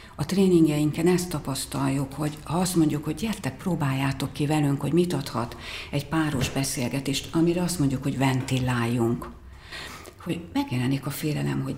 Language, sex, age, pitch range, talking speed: Hungarian, female, 60-79, 135-170 Hz, 150 wpm